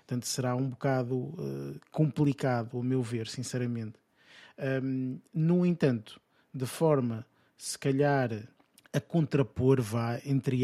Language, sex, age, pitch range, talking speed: Portuguese, male, 20-39, 120-140 Hz, 105 wpm